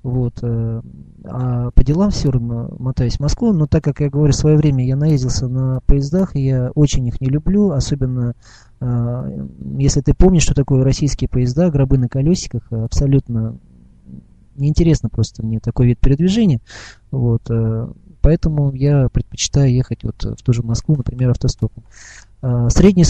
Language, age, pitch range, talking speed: Russian, 20-39, 120-150 Hz, 150 wpm